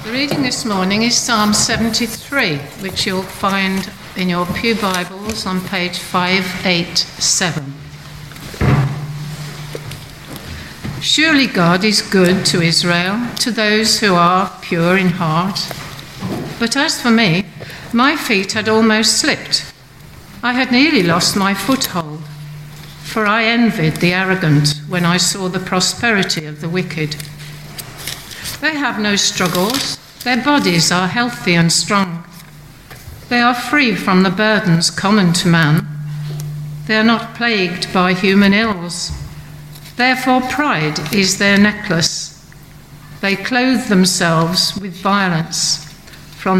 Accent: British